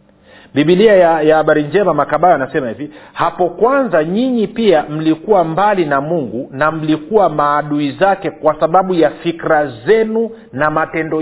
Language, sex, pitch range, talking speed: Swahili, male, 155-200 Hz, 145 wpm